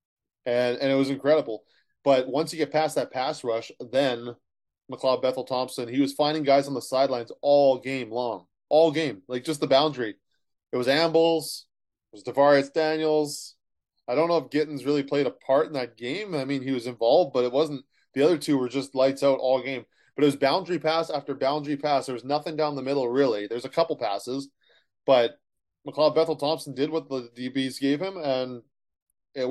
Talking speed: 200 wpm